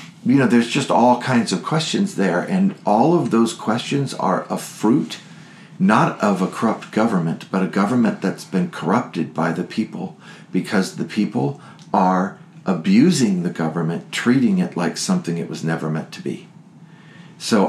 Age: 50-69